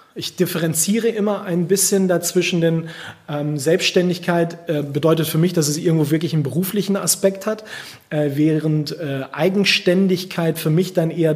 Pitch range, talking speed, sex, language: 150-190 Hz, 155 wpm, male, German